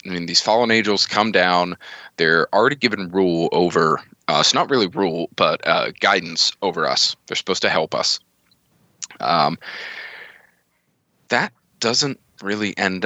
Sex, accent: male, American